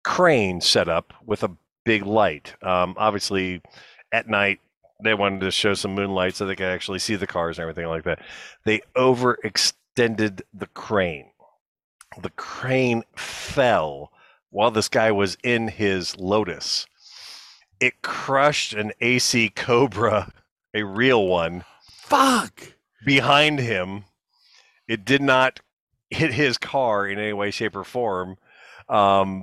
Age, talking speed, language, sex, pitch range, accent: 40-59, 135 wpm, English, male, 90-115 Hz, American